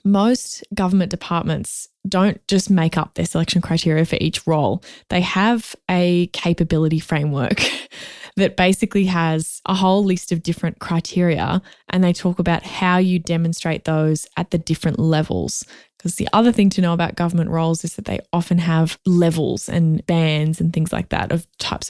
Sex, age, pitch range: female, 20-39, 165-190 Hz